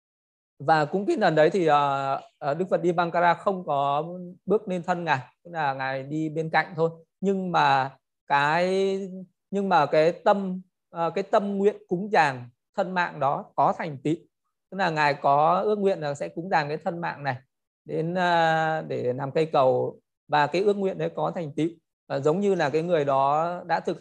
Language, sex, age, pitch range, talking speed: Vietnamese, male, 20-39, 145-185 Hz, 185 wpm